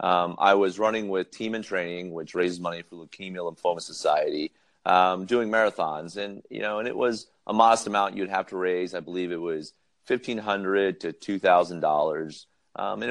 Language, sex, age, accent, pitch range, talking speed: English, male, 30-49, American, 90-100 Hz, 185 wpm